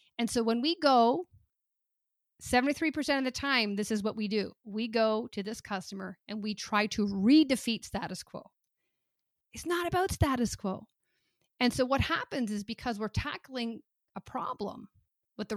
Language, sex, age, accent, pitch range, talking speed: English, female, 40-59, American, 205-265 Hz, 165 wpm